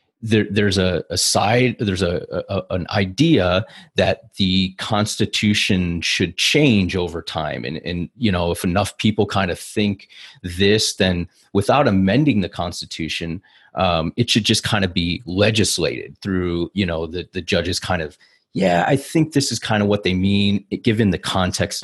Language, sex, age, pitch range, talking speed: English, male, 30-49, 90-110 Hz, 170 wpm